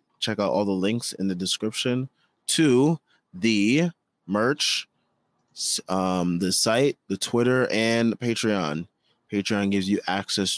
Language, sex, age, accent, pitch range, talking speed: English, male, 20-39, American, 95-115 Hz, 130 wpm